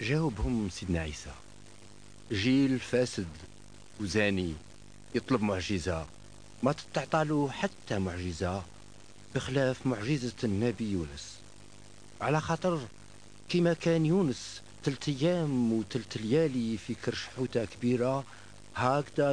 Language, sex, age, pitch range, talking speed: Italian, male, 50-69, 110-140 Hz, 95 wpm